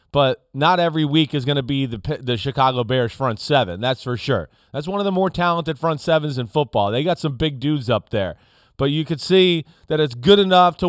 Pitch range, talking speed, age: 135-175 Hz, 235 wpm, 30-49